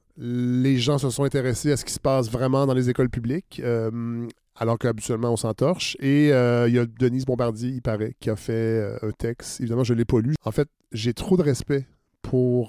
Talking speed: 220 wpm